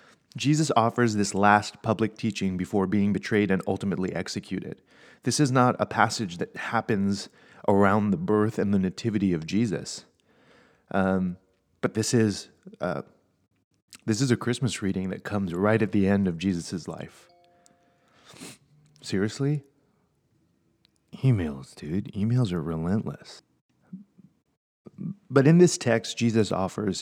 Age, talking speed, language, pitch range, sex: 30-49, 125 wpm, English, 95-120 Hz, male